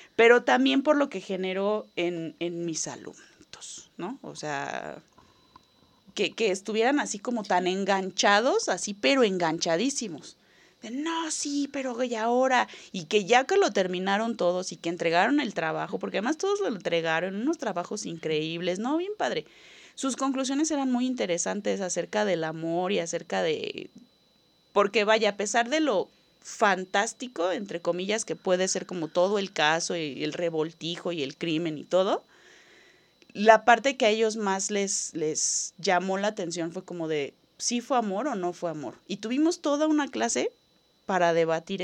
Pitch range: 170-245 Hz